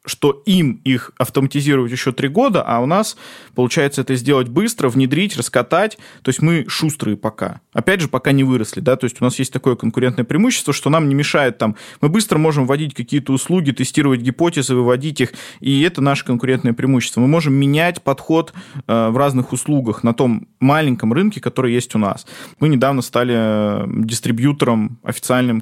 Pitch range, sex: 115-145 Hz, male